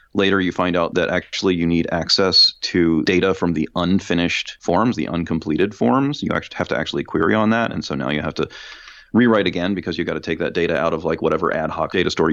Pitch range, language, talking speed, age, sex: 80-100 Hz, English, 240 wpm, 30-49, male